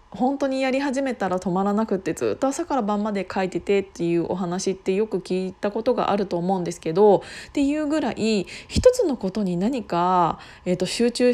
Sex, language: female, Japanese